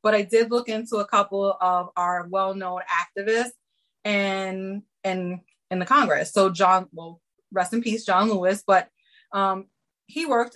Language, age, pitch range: English, 30-49, 180-220 Hz